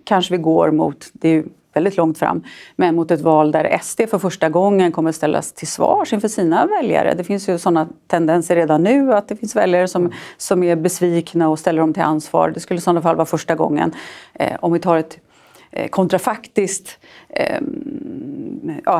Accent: native